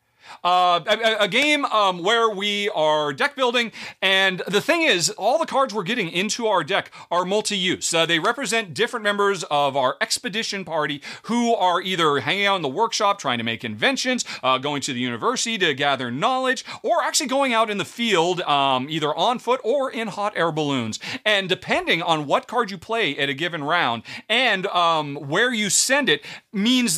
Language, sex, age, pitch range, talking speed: English, male, 40-59, 145-225 Hz, 190 wpm